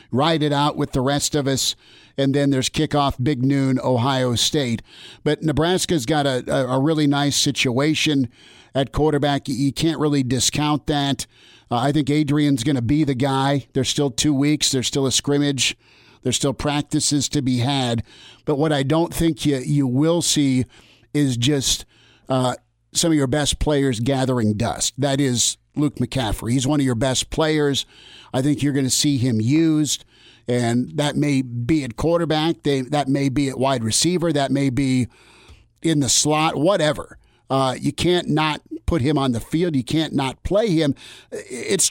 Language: English